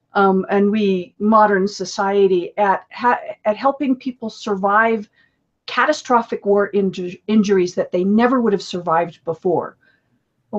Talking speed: 130 wpm